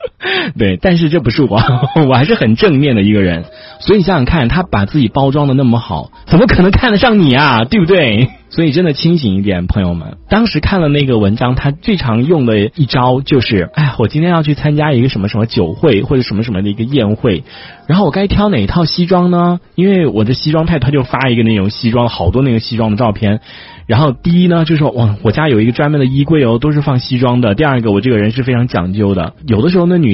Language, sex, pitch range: Chinese, male, 105-150 Hz